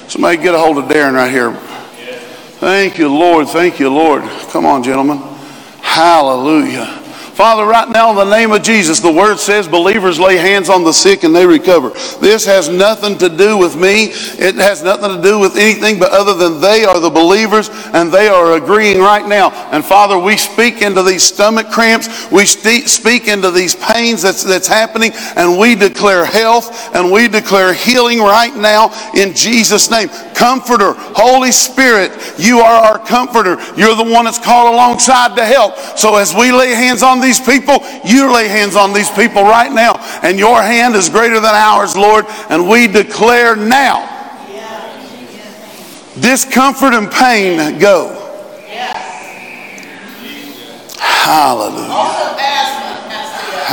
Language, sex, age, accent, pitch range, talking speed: English, male, 50-69, American, 190-235 Hz, 160 wpm